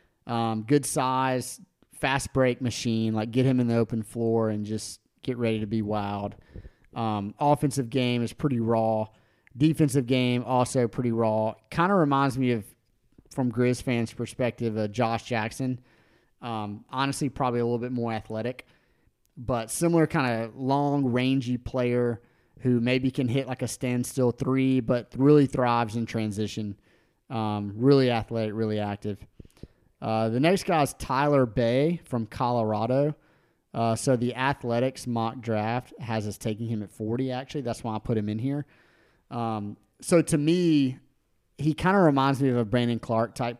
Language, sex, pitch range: English, male, 115-130 Hz